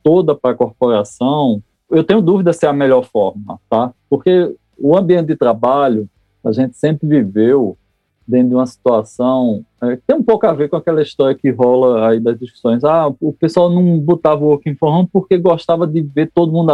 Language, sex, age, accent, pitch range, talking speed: Portuguese, male, 20-39, Brazilian, 130-185 Hz, 195 wpm